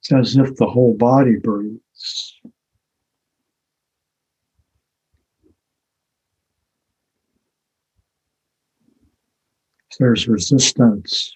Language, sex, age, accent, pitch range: English, male, 60-79, American, 105-125 Hz